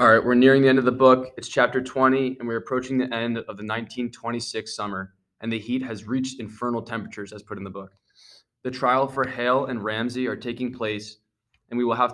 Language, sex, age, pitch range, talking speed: English, male, 20-39, 105-125 Hz, 220 wpm